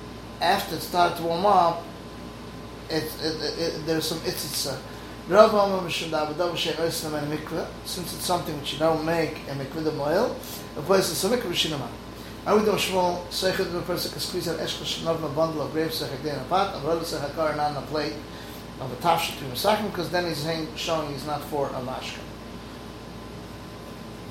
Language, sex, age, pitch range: English, male, 30-49, 145-175 Hz